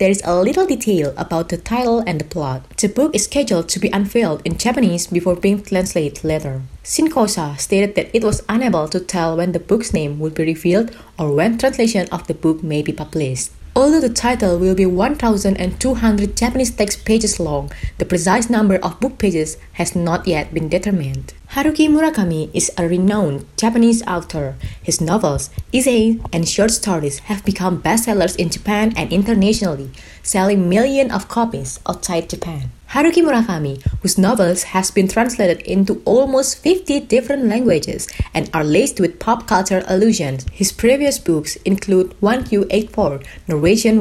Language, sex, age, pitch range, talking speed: Indonesian, female, 20-39, 165-230 Hz, 165 wpm